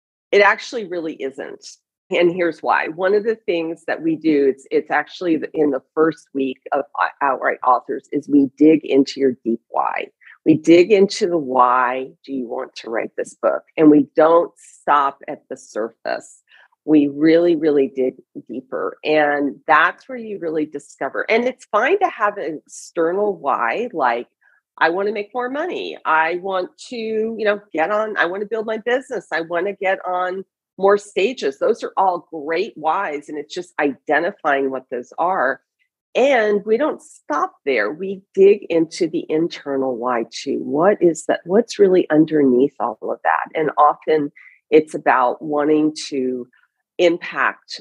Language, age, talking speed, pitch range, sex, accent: English, 40-59, 170 wpm, 145-200 Hz, female, American